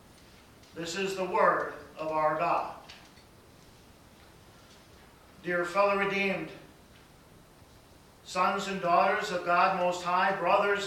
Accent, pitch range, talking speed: American, 175-200 Hz, 100 wpm